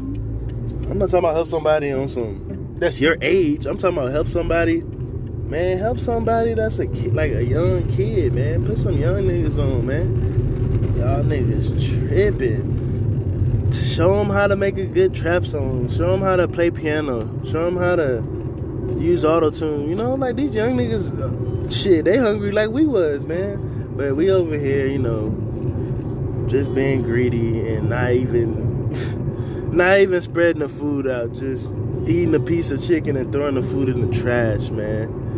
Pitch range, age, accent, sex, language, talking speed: 115-140 Hz, 20-39, American, male, English, 170 wpm